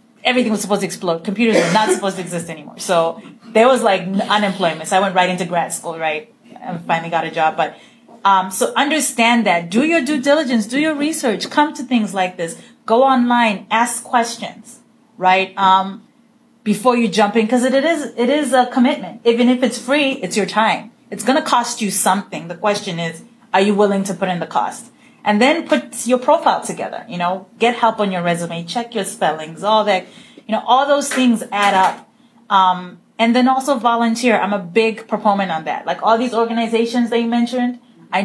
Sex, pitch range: female, 195-245 Hz